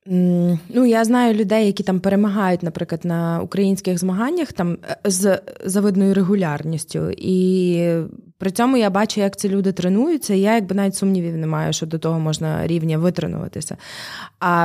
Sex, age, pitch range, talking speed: female, 20-39, 180-230 Hz, 155 wpm